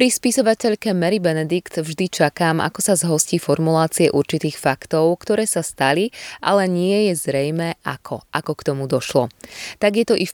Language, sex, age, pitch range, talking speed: Slovak, female, 20-39, 140-190 Hz, 170 wpm